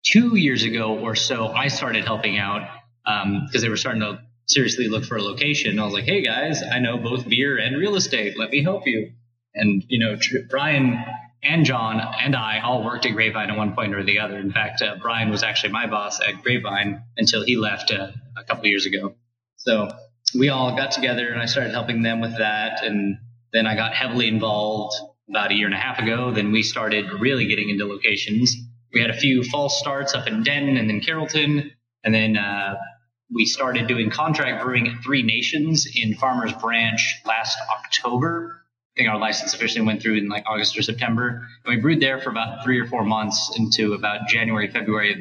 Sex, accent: male, American